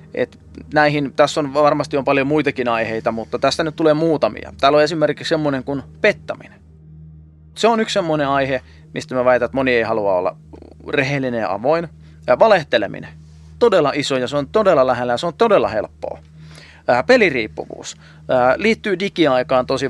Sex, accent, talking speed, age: male, native, 170 wpm, 30-49